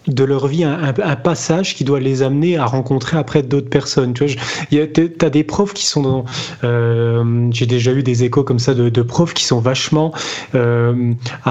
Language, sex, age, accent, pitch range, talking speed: French, male, 20-39, French, 125-145 Hz, 200 wpm